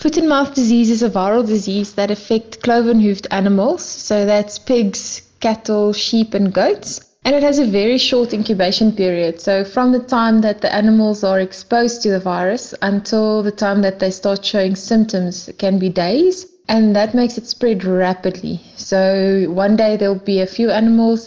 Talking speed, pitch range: 175 wpm, 190-220 Hz